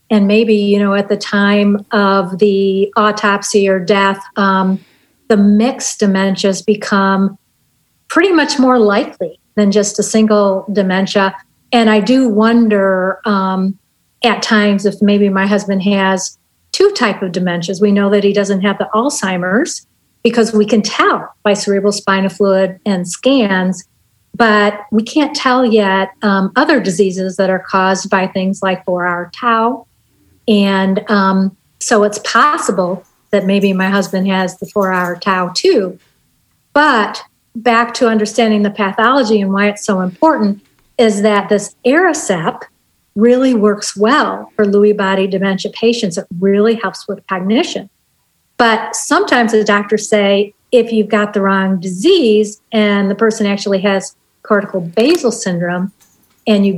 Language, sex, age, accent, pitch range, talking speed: English, female, 50-69, American, 195-220 Hz, 150 wpm